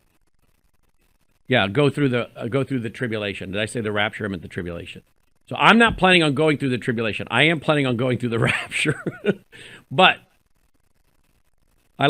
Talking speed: 185 wpm